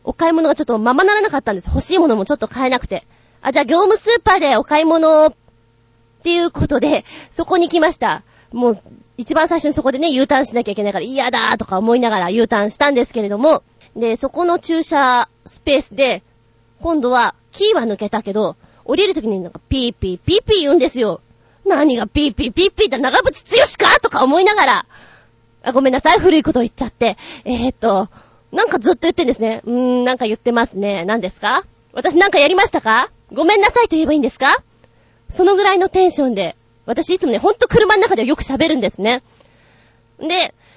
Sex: female